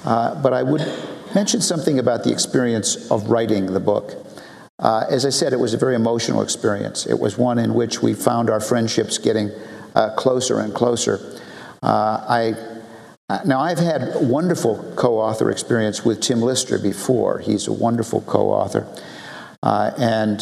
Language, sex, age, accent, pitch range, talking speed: English, male, 50-69, American, 110-140 Hz, 155 wpm